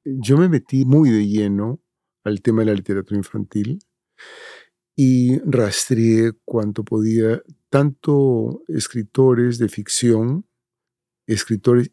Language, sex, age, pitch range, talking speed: English, male, 50-69, 105-125 Hz, 105 wpm